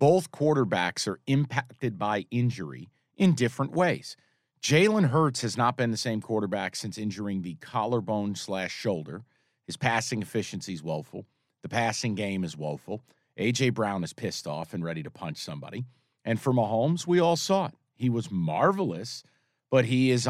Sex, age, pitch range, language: male, 40-59, 110-140 Hz, English